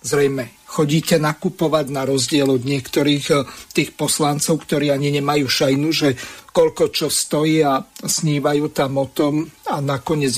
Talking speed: 140 wpm